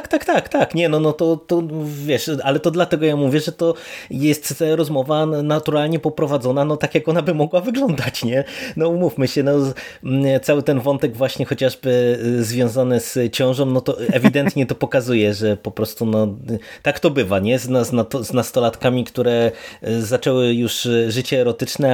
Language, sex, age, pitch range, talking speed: Polish, male, 20-39, 110-135 Hz, 180 wpm